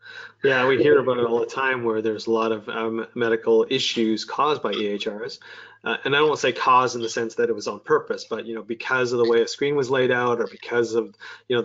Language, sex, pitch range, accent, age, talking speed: English, male, 115-175 Hz, American, 20-39, 270 wpm